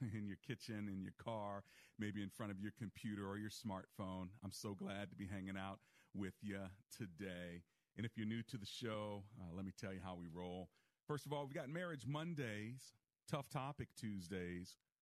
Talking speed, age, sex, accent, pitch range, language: 200 wpm, 40-59, male, American, 85-110 Hz, English